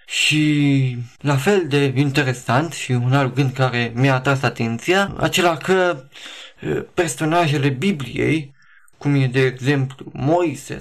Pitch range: 130-150 Hz